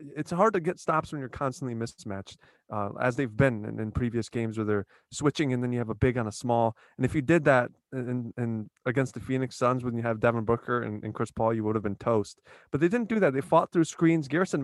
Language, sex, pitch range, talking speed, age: English, male, 115-155 Hz, 270 wpm, 20-39